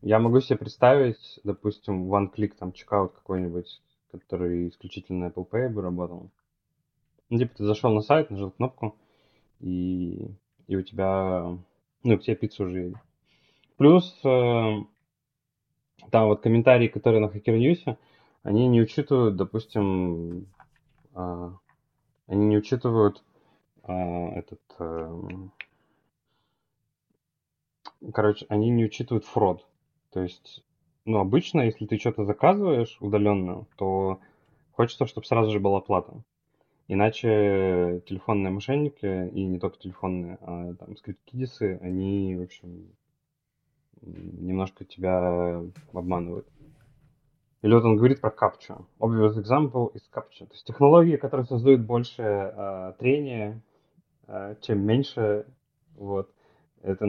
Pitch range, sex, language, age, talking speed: 95-120 Hz, male, Russian, 20-39, 120 wpm